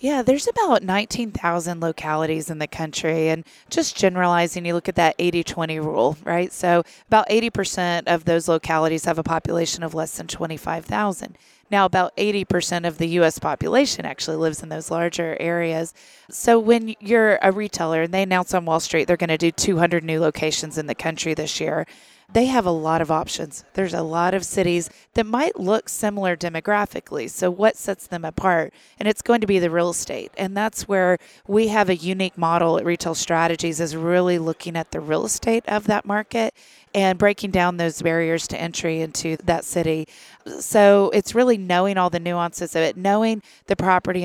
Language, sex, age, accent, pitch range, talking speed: English, female, 20-39, American, 165-195 Hz, 190 wpm